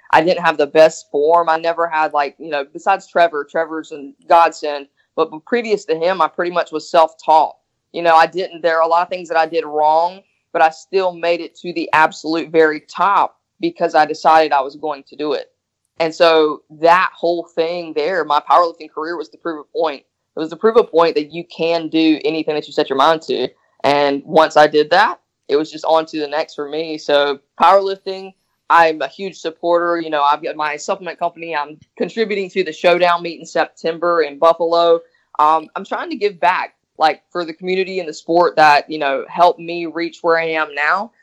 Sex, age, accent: female, 20-39, American